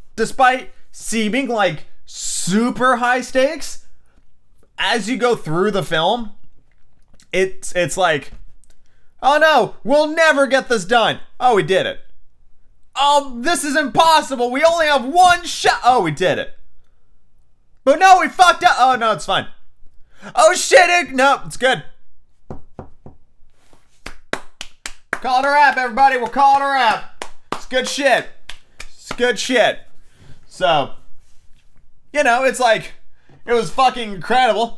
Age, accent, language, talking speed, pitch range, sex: 30-49, American, English, 135 wpm, 165-255 Hz, male